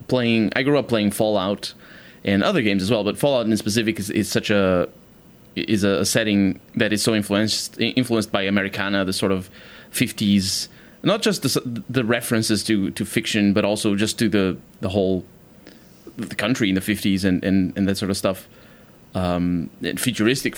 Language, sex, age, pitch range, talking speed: English, male, 20-39, 100-120 Hz, 185 wpm